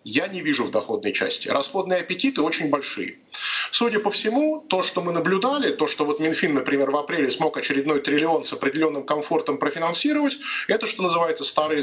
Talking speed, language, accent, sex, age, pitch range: 180 wpm, Russian, native, male, 20-39, 145-195 Hz